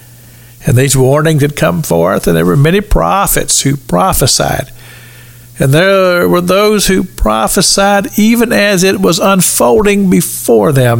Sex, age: male, 50-69